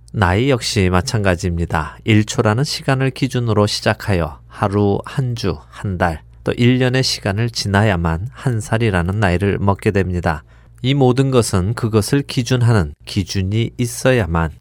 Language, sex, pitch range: Korean, male, 90-115 Hz